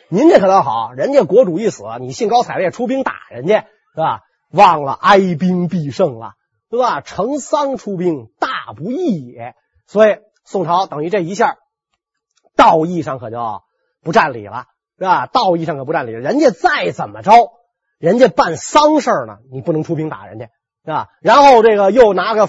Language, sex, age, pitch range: Chinese, male, 30-49, 160-255 Hz